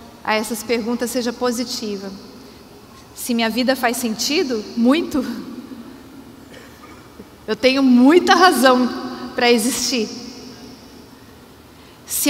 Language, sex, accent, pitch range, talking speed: Portuguese, female, Brazilian, 235-270 Hz, 90 wpm